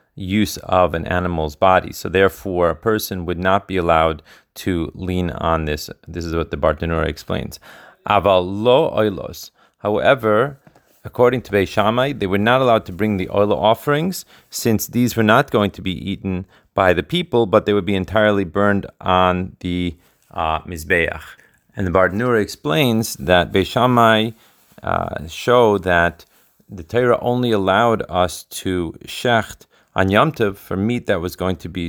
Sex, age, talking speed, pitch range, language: male, 30-49, 160 wpm, 90-105 Hz, Hebrew